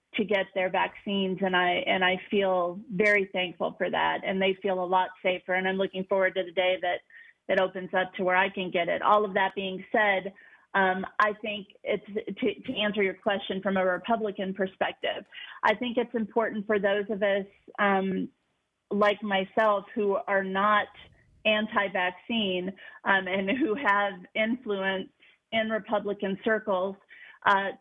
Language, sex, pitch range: English, female, 190-215 Hz